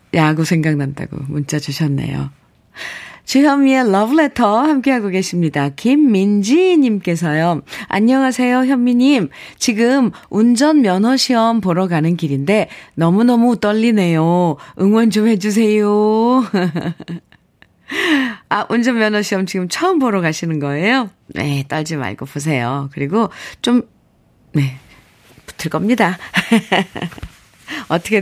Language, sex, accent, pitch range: Korean, female, native, 160-245 Hz